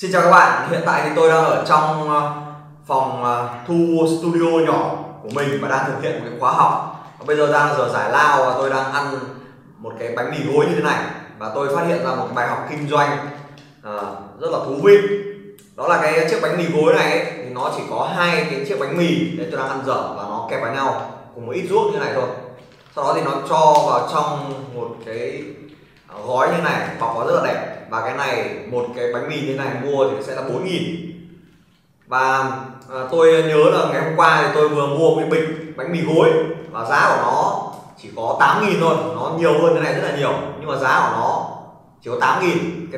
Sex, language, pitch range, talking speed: male, Vietnamese, 135-175 Hz, 235 wpm